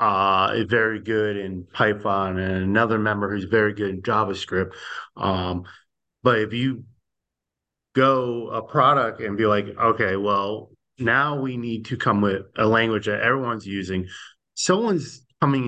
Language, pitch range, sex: English, 100-125 Hz, male